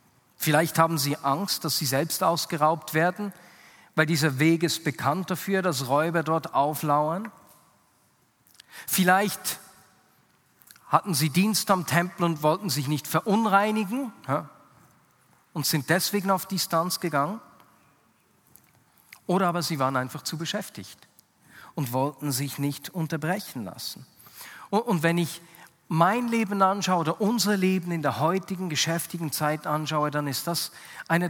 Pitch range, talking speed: 150-185 Hz, 130 wpm